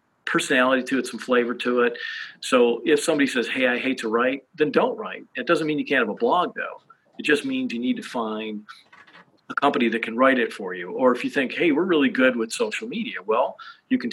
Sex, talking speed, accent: male, 240 wpm, American